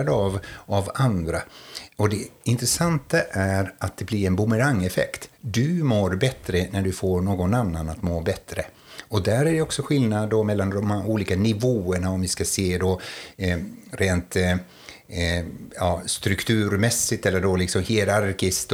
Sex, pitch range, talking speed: male, 90-110 Hz, 155 wpm